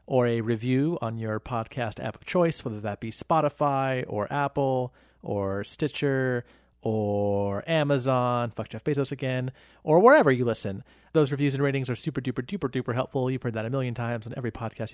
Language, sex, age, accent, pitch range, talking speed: English, male, 30-49, American, 115-145 Hz, 175 wpm